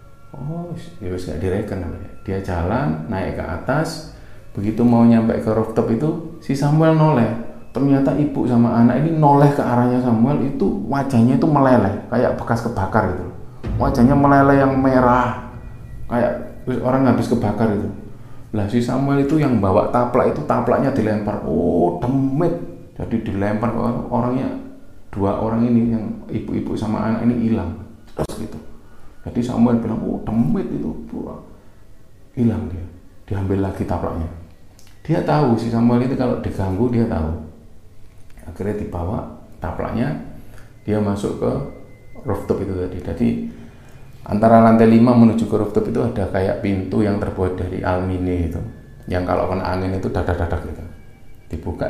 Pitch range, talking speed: 95-120 Hz, 140 wpm